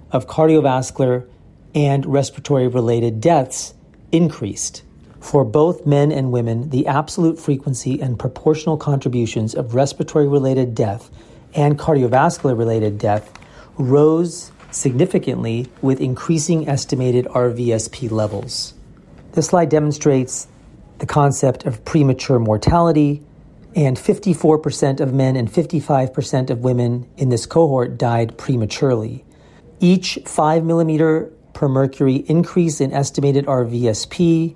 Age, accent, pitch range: 40-59, American, 125-155 Hz